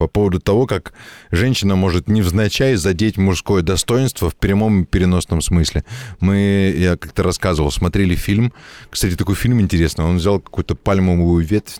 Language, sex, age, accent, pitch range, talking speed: Russian, male, 20-39, native, 90-115 Hz, 145 wpm